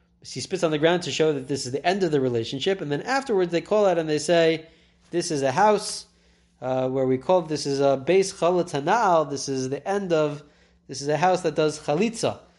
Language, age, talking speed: English, 20-39, 235 wpm